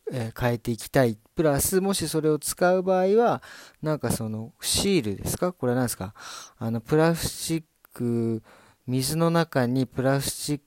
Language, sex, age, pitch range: Japanese, male, 40-59, 110-145 Hz